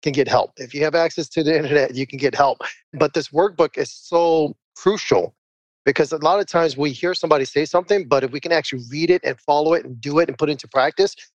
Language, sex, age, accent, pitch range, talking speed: English, male, 30-49, American, 145-175 Hz, 255 wpm